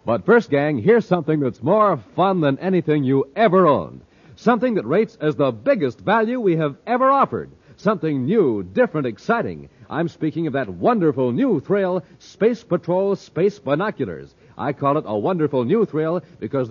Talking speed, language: 170 wpm, English